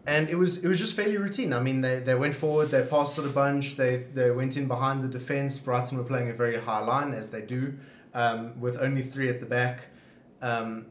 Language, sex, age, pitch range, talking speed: English, male, 20-39, 120-145 Hz, 240 wpm